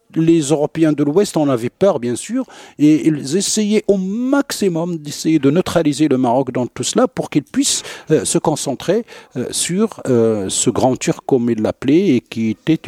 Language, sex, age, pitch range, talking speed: French, male, 60-79, 105-150 Hz, 185 wpm